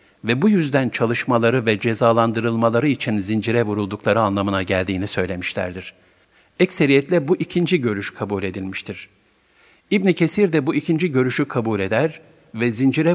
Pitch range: 100-145 Hz